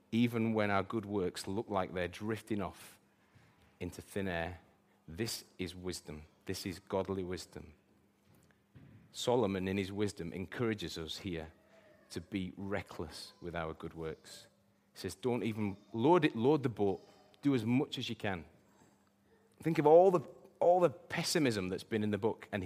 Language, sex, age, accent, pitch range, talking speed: English, male, 30-49, British, 95-120 Hz, 165 wpm